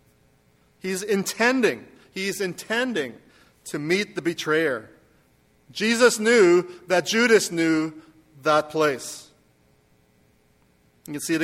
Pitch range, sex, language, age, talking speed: 150-195 Hz, male, English, 40-59, 100 wpm